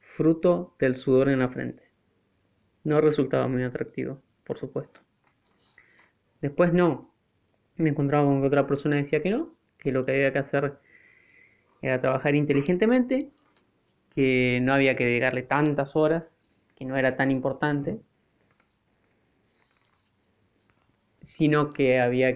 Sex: male